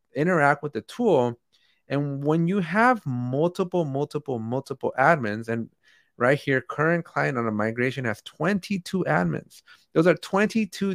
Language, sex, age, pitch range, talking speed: English, male, 30-49, 125-175 Hz, 140 wpm